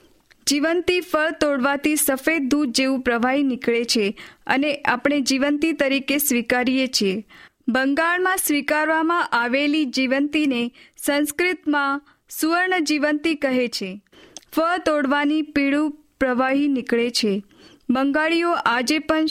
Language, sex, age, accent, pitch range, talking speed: Hindi, female, 20-39, native, 260-310 Hz, 60 wpm